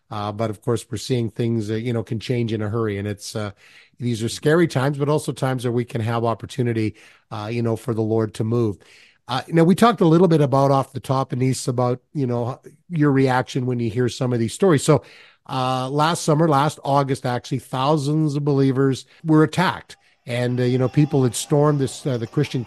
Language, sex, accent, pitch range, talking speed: English, male, American, 120-140 Hz, 225 wpm